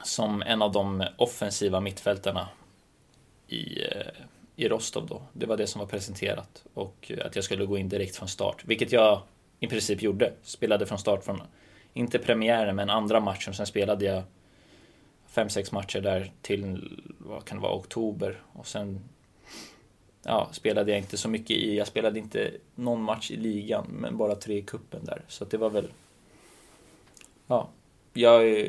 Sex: male